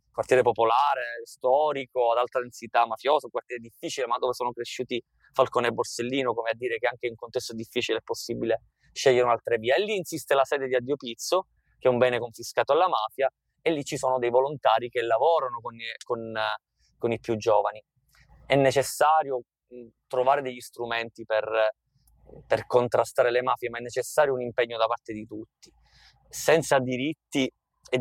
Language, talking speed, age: Italian, 175 wpm, 20-39